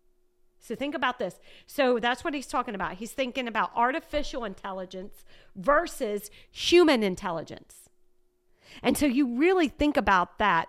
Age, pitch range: 40-59, 220-305 Hz